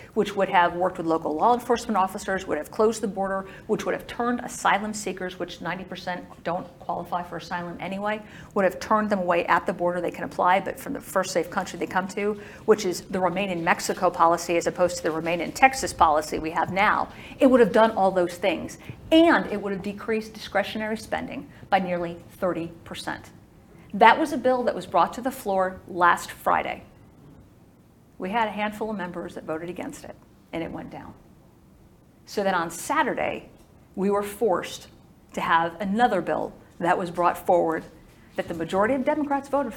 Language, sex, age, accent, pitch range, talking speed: English, female, 50-69, American, 175-220 Hz, 195 wpm